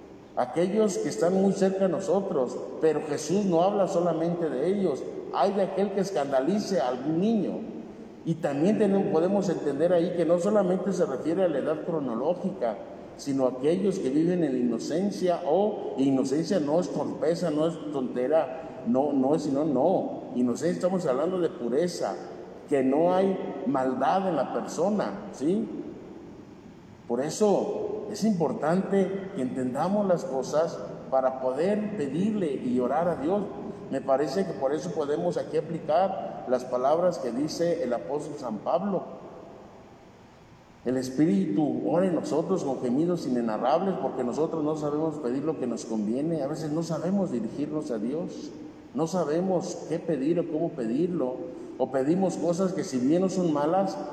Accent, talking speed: Mexican, 155 wpm